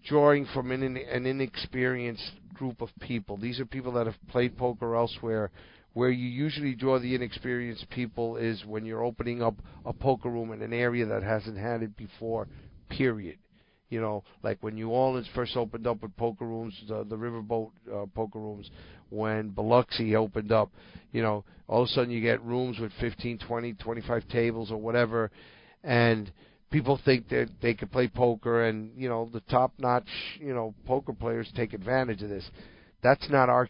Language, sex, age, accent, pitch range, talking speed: English, male, 50-69, American, 110-125 Hz, 180 wpm